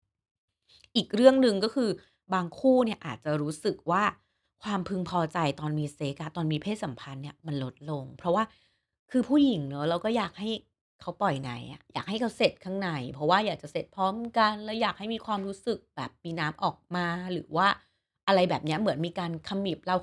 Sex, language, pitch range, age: female, Thai, 150-200 Hz, 30-49